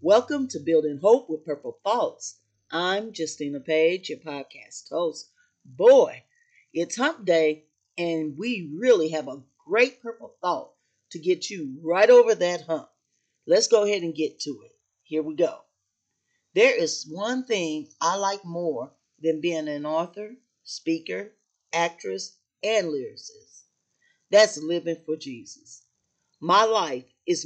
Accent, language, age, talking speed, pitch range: American, English, 40-59, 140 wpm, 150-205 Hz